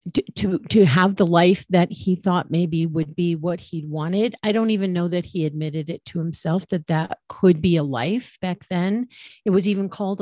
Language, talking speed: English, 225 wpm